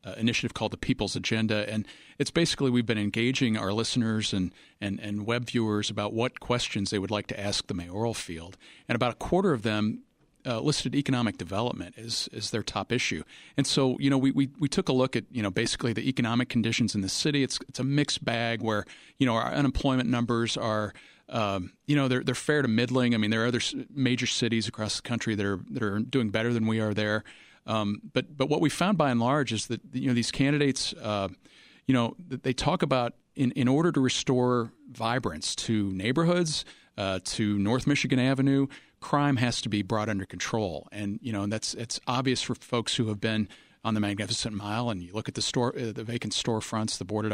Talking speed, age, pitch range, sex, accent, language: 220 wpm, 40-59, 105-130 Hz, male, American, English